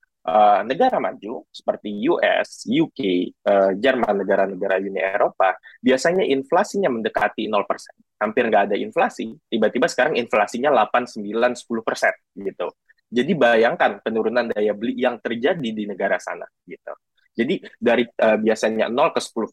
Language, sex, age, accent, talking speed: Indonesian, male, 20-39, native, 135 wpm